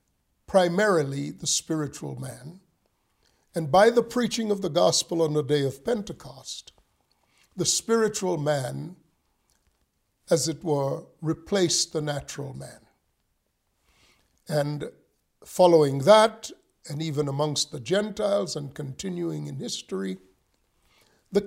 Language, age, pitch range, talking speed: English, 50-69, 135-195 Hz, 110 wpm